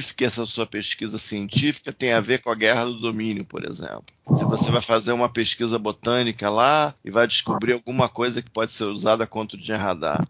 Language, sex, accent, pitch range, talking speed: Portuguese, male, Brazilian, 110-145 Hz, 210 wpm